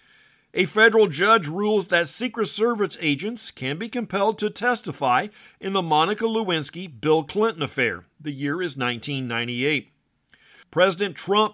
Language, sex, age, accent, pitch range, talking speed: English, male, 50-69, American, 140-200 Hz, 130 wpm